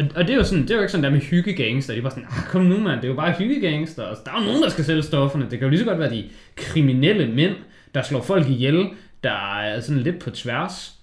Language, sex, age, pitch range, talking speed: Danish, male, 20-39, 110-160 Hz, 285 wpm